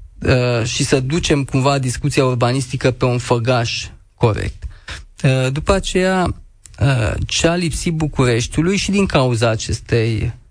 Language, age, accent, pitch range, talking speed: Romanian, 20-39, native, 120-150 Hz, 130 wpm